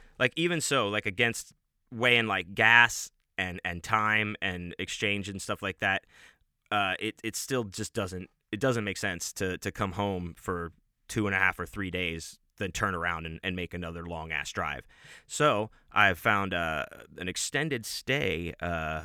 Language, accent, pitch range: English, American, 90-115 Hz